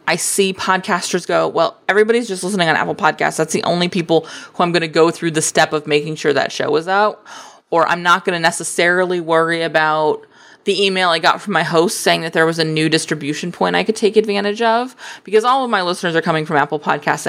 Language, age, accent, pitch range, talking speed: English, 20-39, American, 165-220 Hz, 235 wpm